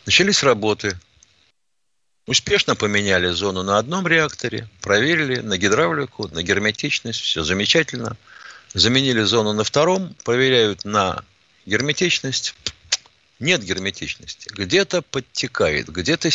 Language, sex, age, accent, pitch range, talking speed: Russian, male, 50-69, native, 105-145 Hz, 100 wpm